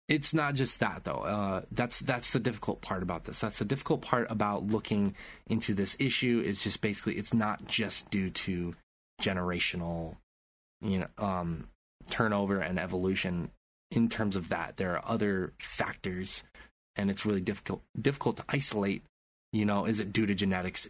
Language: English